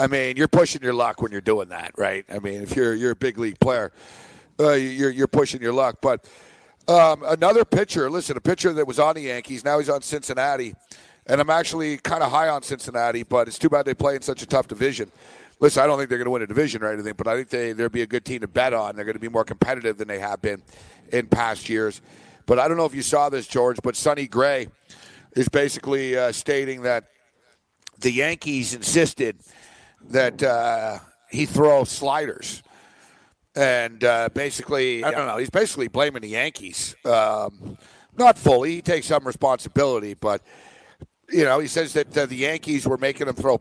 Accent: American